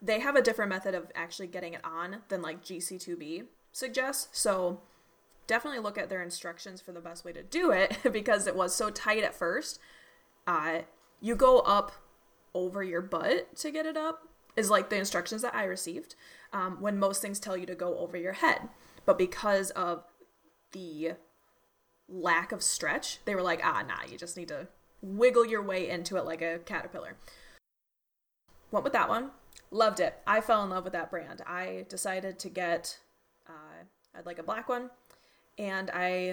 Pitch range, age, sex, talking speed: 175-220 Hz, 20-39, female, 185 wpm